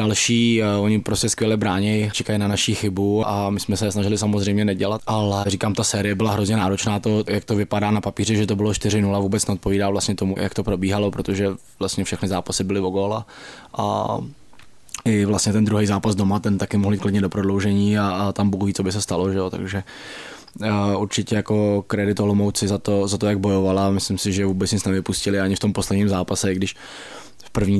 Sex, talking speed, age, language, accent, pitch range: male, 200 wpm, 20-39, Czech, native, 100-105 Hz